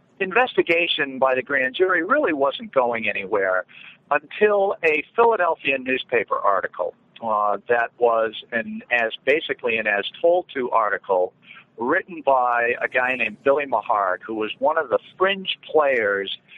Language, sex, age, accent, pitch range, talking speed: English, male, 50-69, American, 115-160 Hz, 140 wpm